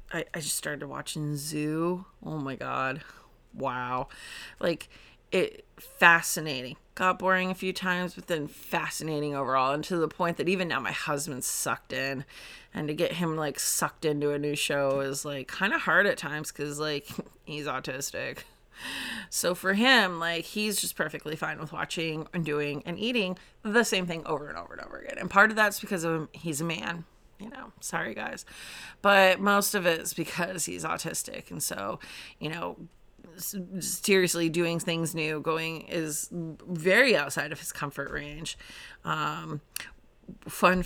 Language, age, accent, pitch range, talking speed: English, 30-49, American, 150-185 Hz, 175 wpm